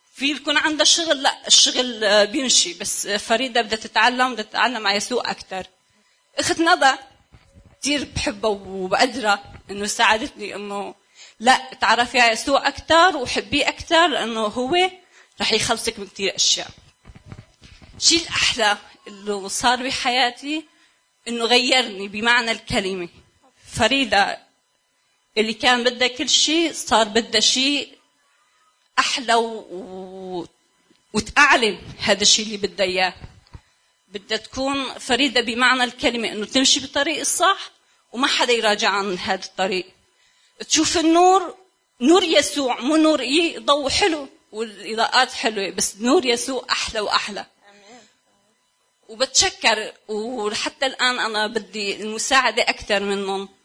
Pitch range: 210-270 Hz